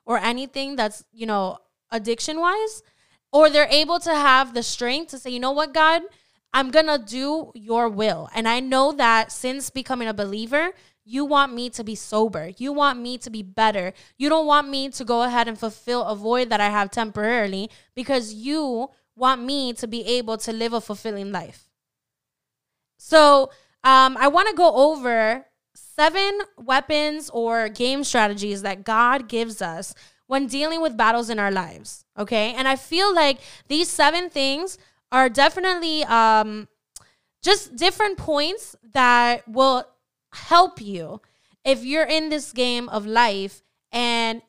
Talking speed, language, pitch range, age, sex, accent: 165 wpm, English, 220-285 Hz, 10-29, female, American